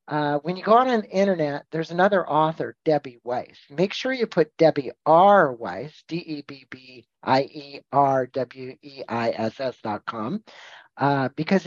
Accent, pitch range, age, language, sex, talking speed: American, 145-185 Hz, 50-69, English, male, 110 wpm